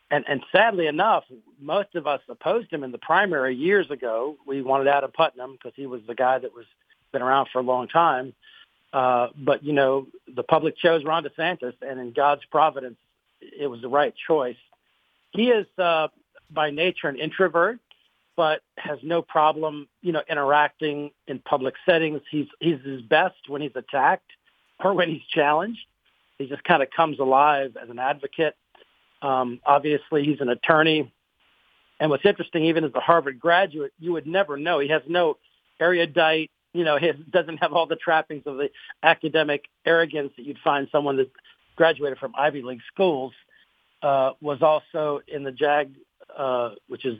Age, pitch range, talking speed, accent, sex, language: 50-69, 135-165 Hz, 175 wpm, American, male, English